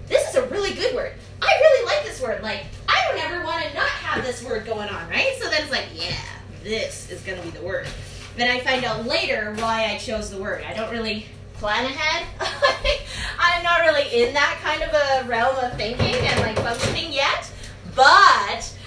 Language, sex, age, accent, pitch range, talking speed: English, female, 20-39, American, 220-345 Hz, 215 wpm